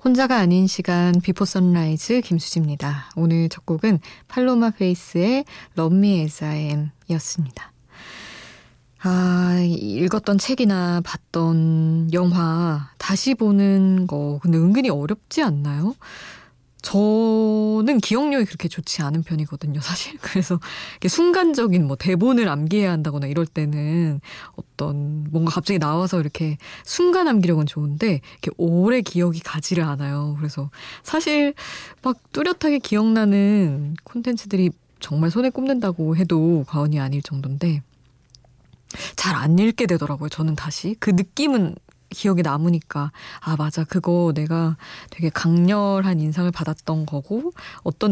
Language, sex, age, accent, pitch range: Korean, female, 20-39, native, 155-205 Hz